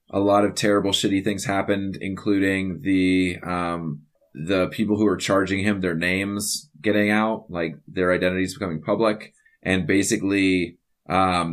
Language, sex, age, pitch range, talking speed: English, male, 20-39, 90-105 Hz, 145 wpm